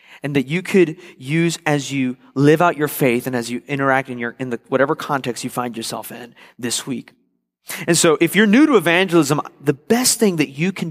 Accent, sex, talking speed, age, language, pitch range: American, male, 220 wpm, 30-49, English, 125-170 Hz